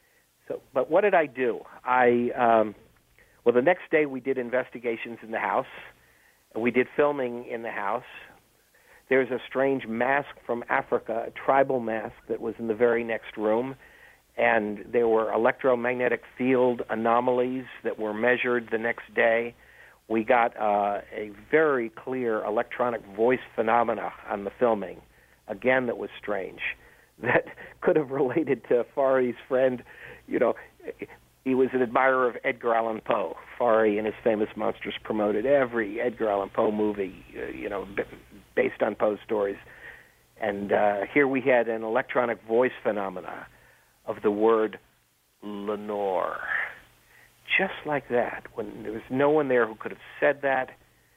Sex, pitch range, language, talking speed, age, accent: male, 110-130 Hz, English, 150 wpm, 50-69, American